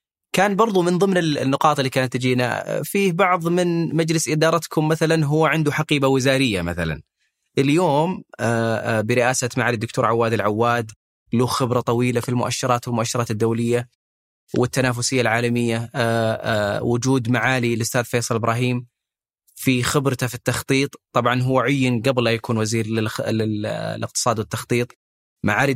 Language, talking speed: Arabic, 125 wpm